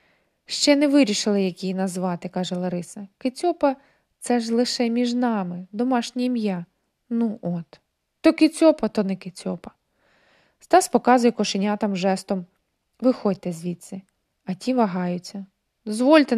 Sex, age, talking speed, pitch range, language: female, 20-39, 125 wpm, 195-245 Hz, Ukrainian